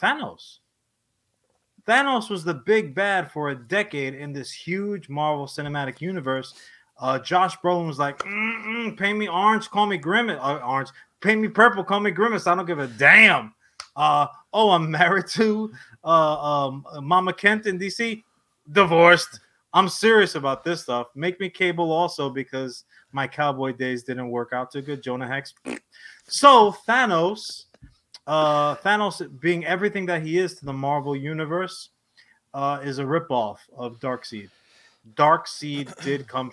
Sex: male